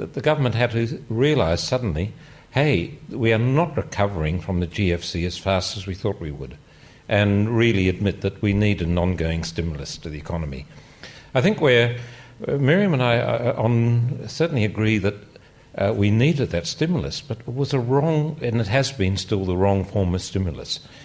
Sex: male